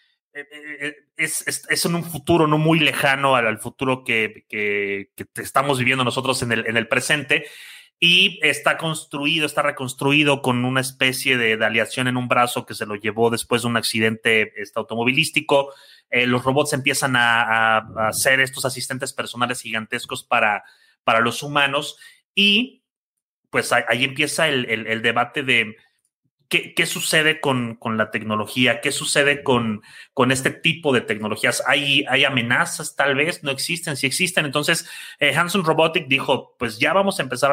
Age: 30-49